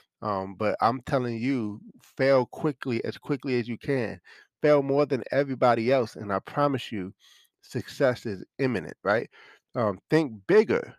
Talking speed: 155 wpm